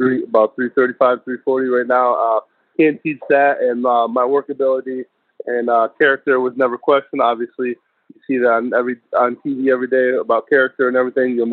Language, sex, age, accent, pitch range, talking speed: English, male, 20-39, American, 120-140 Hz, 205 wpm